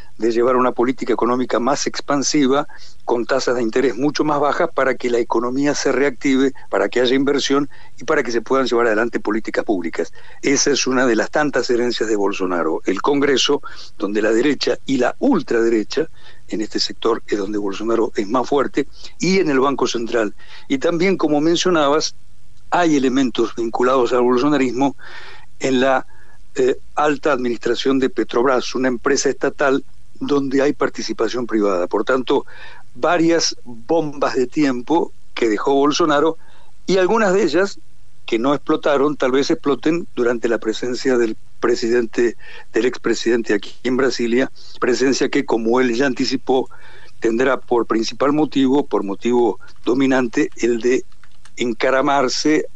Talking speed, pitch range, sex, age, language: 150 wpm, 120-145 Hz, male, 60-79, Spanish